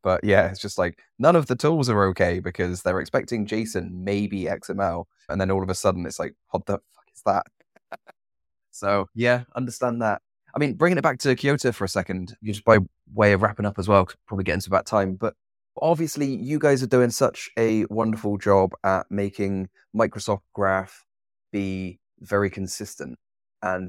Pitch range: 90-110 Hz